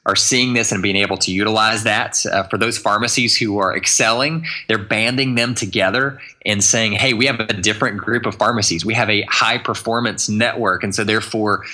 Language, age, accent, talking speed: English, 20-39, American, 195 wpm